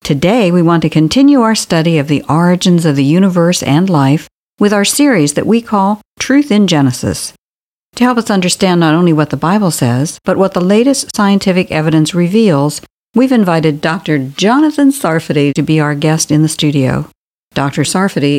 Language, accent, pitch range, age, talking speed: English, American, 150-190 Hz, 50-69, 180 wpm